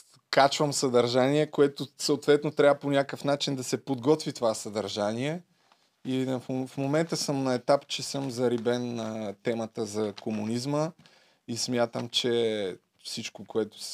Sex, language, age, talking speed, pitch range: male, Bulgarian, 20-39, 140 wpm, 110-135 Hz